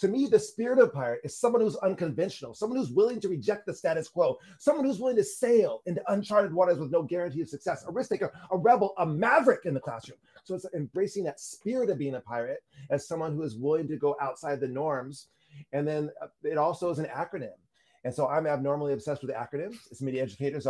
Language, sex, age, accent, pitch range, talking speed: English, male, 30-49, American, 135-185 Hz, 225 wpm